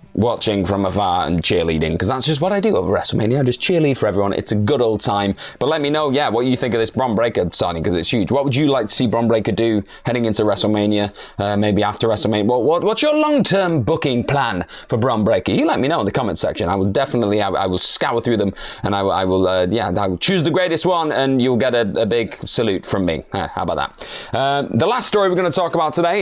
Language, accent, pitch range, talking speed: English, British, 100-150 Hz, 265 wpm